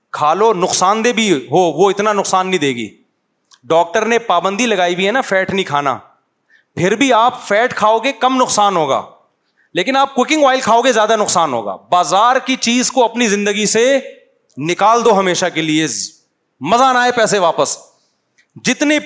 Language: Urdu